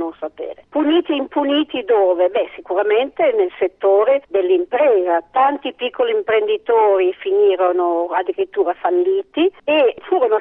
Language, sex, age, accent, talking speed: Italian, female, 50-69, native, 100 wpm